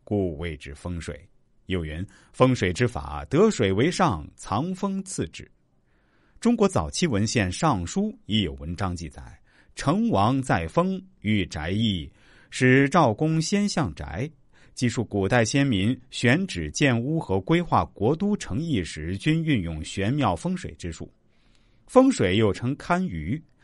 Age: 50-69